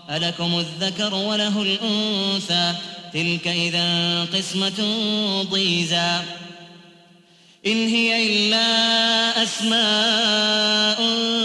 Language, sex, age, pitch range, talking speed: Arabic, male, 30-49, 175-210 Hz, 65 wpm